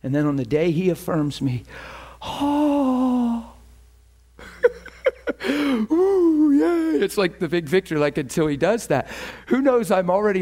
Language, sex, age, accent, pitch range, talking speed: English, male, 50-69, American, 185-290 Hz, 140 wpm